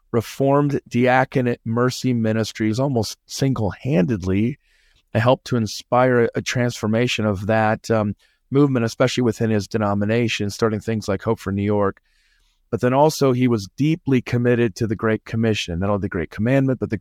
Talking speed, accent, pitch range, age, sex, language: 155 wpm, American, 105-130 Hz, 40-59, male, English